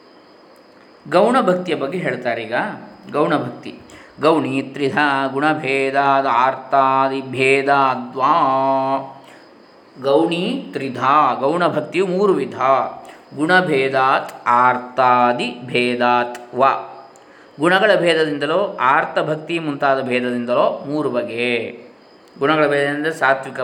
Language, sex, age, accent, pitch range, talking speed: Kannada, male, 20-39, native, 125-150 Hz, 75 wpm